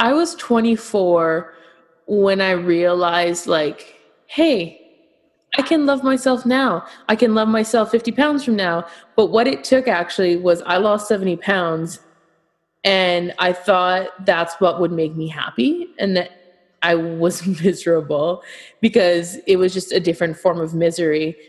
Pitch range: 170-215 Hz